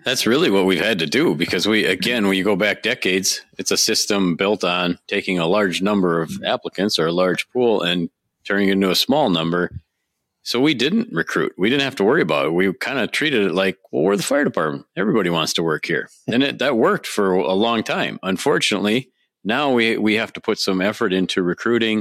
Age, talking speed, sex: 40-59, 220 wpm, male